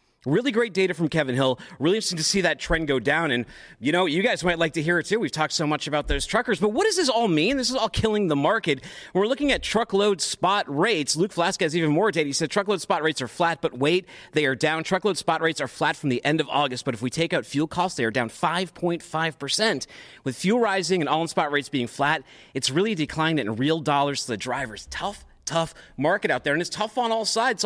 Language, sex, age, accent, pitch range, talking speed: English, male, 40-59, American, 145-225 Hz, 255 wpm